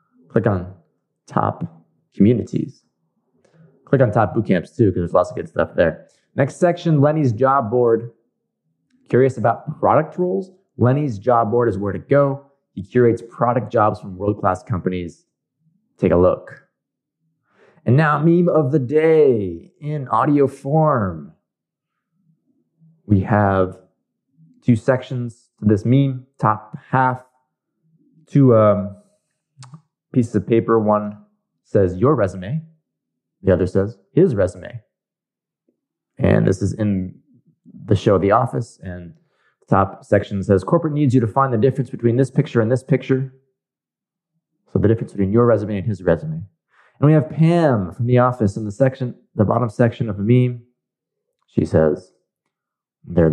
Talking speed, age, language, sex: 145 wpm, 20-39, English, male